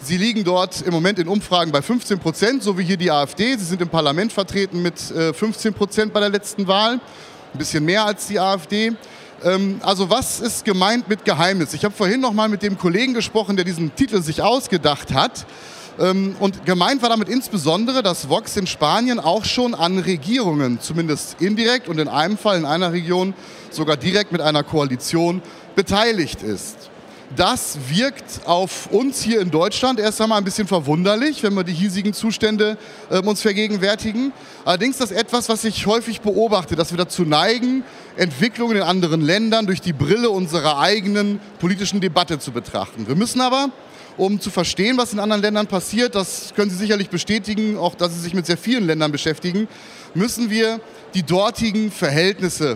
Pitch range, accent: 175-215 Hz, German